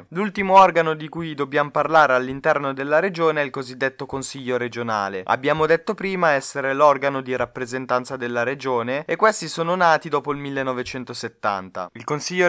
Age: 20-39